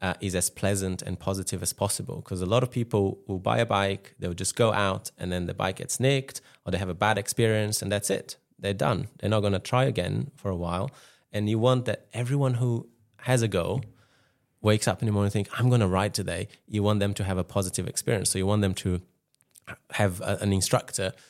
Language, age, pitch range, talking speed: English, 20-39, 95-120 Hz, 235 wpm